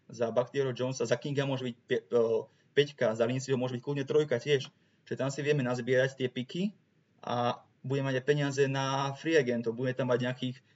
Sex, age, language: male, 20-39, Slovak